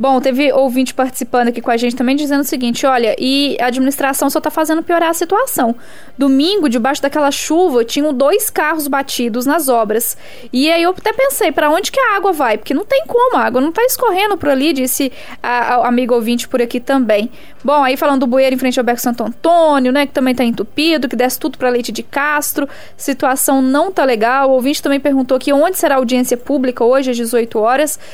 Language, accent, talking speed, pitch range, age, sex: Portuguese, Brazilian, 220 wpm, 245-295 Hz, 10-29, female